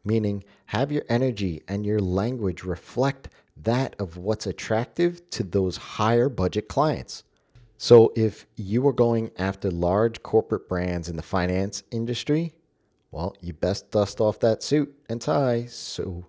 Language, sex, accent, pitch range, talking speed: English, male, American, 95-125 Hz, 145 wpm